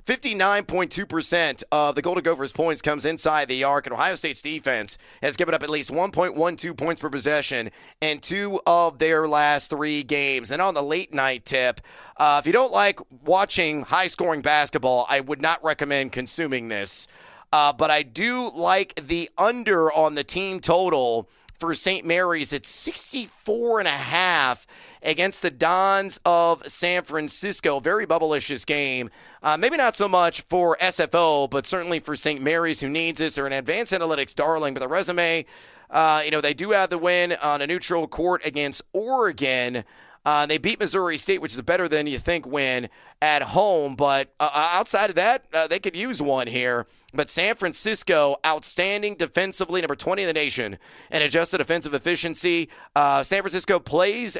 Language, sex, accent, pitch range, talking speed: English, male, American, 145-180 Hz, 165 wpm